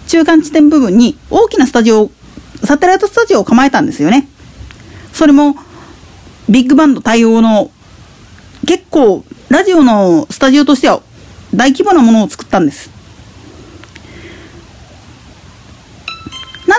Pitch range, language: 215-315 Hz, Japanese